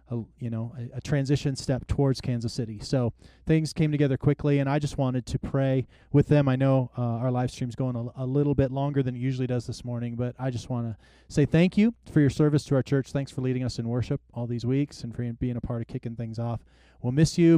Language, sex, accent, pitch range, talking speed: English, male, American, 115-135 Hz, 260 wpm